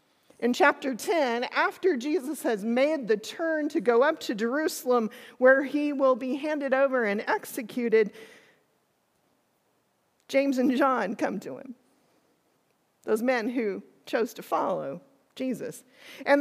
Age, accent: 40-59, American